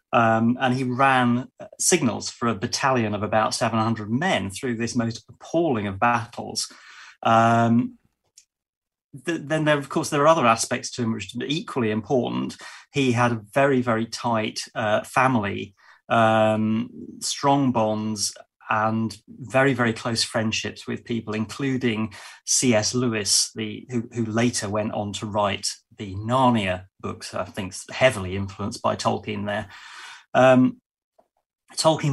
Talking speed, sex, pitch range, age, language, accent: 135 wpm, male, 110-130 Hz, 30-49, English, British